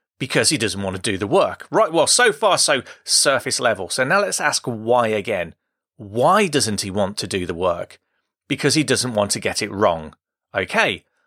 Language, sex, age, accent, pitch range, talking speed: English, male, 30-49, British, 115-185 Hz, 200 wpm